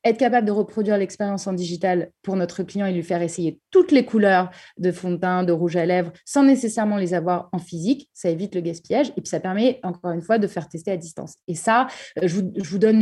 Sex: female